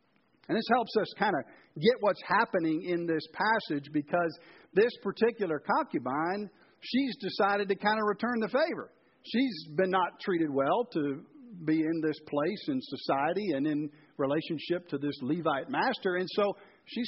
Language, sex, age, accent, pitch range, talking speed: English, male, 50-69, American, 135-200 Hz, 160 wpm